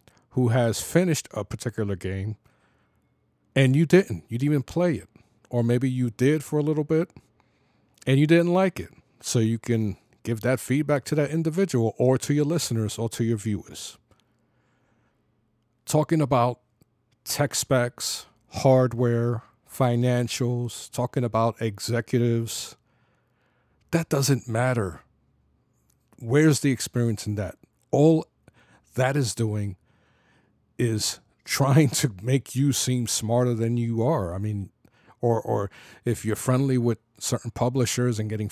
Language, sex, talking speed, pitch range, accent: English, male, 135 wpm, 115-140 Hz, American